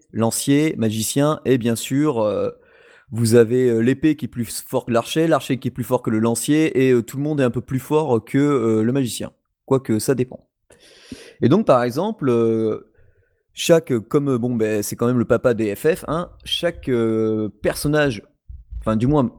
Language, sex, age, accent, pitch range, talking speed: French, male, 30-49, French, 115-155 Hz, 200 wpm